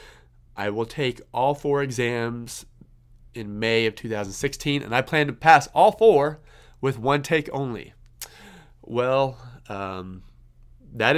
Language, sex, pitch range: English, male, 105-130 Hz